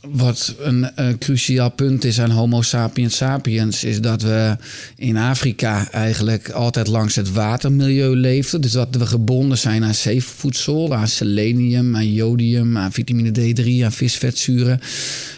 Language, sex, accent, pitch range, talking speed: Dutch, male, Dutch, 115-130 Hz, 145 wpm